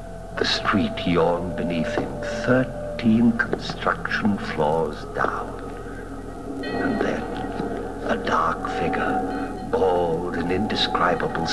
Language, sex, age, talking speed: English, male, 60-79, 90 wpm